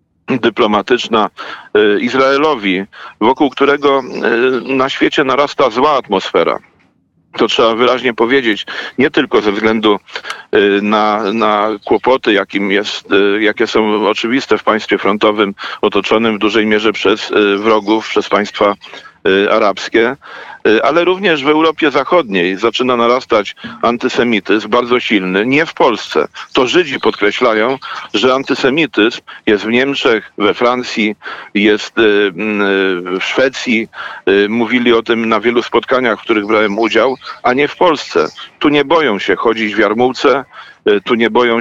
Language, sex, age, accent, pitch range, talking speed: Polish, male, 50-69, native, 105-120 Hz, 125 wpm